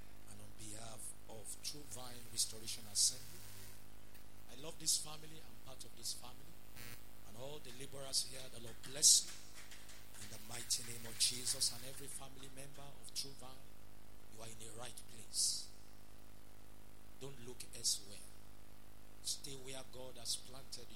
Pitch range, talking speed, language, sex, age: 105-125 Hz, 145 wpm, English, male, 50-69